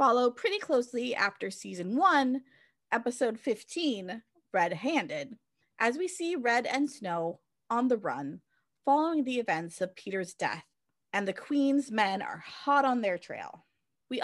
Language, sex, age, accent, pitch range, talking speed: English, female, 20-39, American, 195-275 Hz, 145 wpm